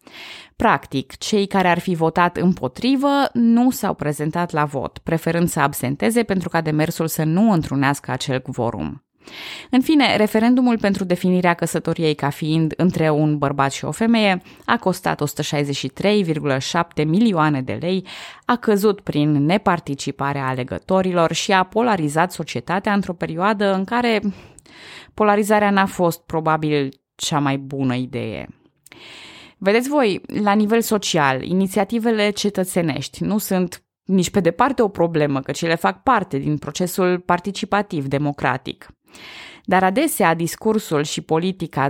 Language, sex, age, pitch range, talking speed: Romanian, female, 20-39, 150-215 Hz, 130 wpm